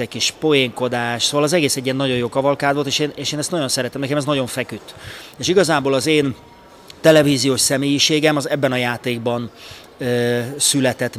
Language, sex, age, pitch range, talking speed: Hungarian, male, 30-49, 125-155 Hz, 180 wpm